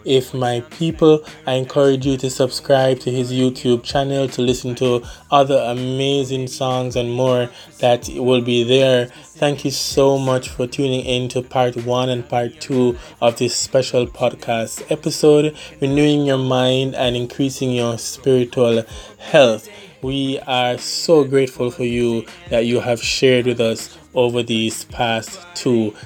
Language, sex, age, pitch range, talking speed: English, male, 20-39, 120-145 Hz, 150 wpm